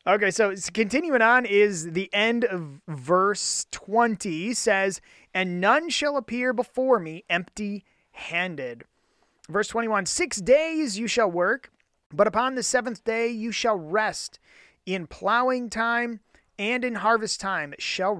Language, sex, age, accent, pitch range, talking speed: English, male, 30-49, American, 185-255 Hz, 135 wpm